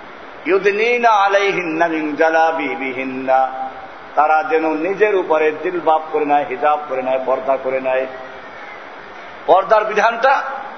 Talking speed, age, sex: 130 wpm, 50-69, male